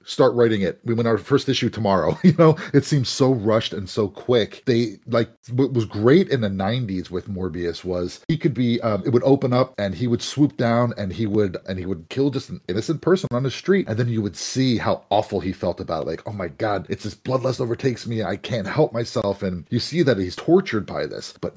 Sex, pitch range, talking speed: male, 100-135 Hz, 250 wpm